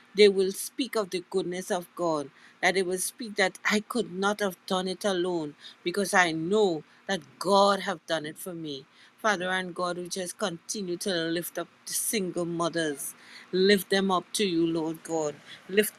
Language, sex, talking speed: English, female, 190 wpm